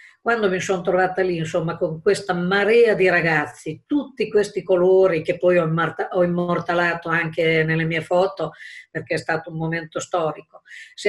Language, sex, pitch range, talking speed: Italian, female, 165-190 Hz, 155 wpm